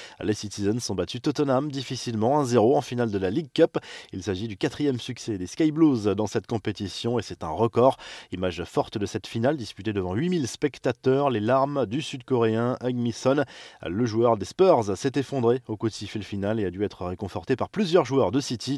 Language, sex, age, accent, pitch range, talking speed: French, male, 20-39, French, 110-140 Hz, 205 wpm